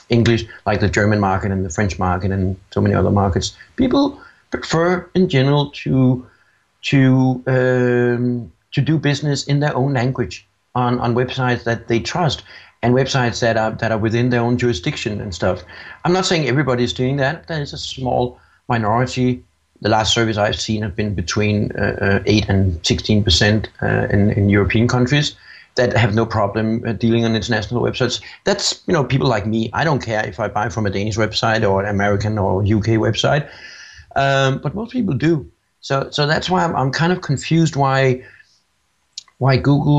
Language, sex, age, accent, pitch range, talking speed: English, male, 60-79, Danish, 105-130 Hz, 180 wpm